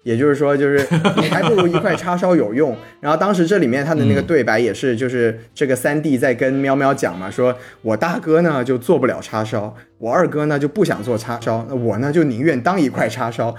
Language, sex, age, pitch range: Chinese, male, 20-39, 115-180 Hz